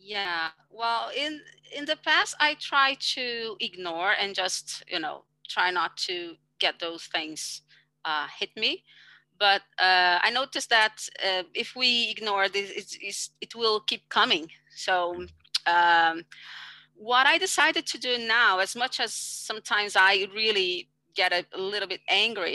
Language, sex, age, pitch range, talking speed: English, female, 30-49, 175-245 Hz, 155 wpm